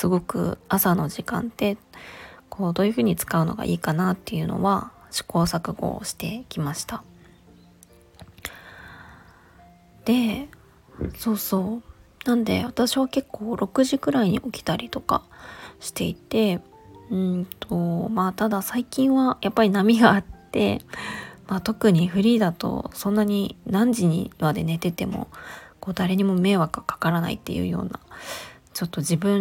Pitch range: 170-225 Hz